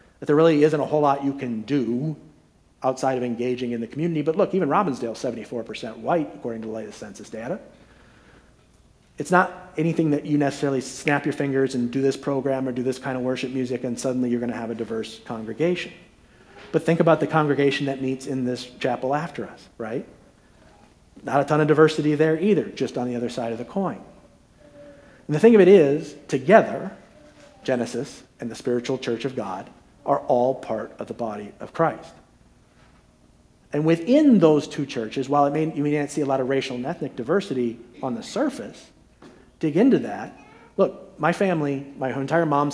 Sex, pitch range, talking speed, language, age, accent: male, 120-155 Hz, 195 wpm, English, 40-59, American